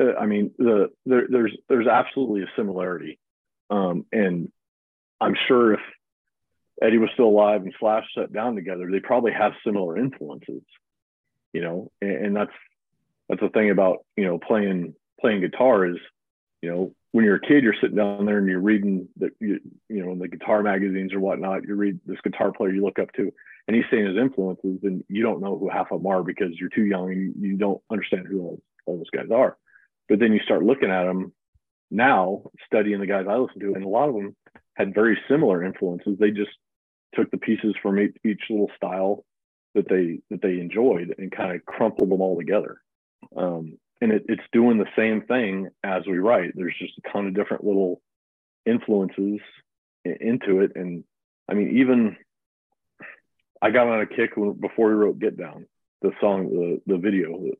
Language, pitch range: English, 95-105 Hz